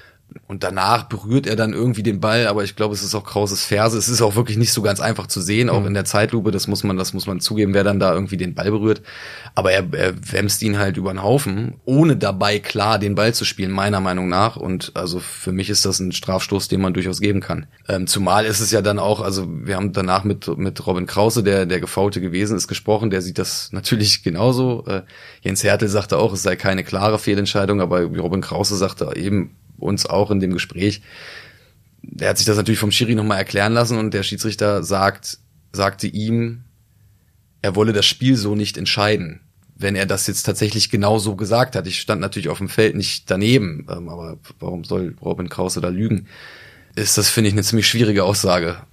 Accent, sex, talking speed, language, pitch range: German, male, 215 wpm, German, 95-110 Hz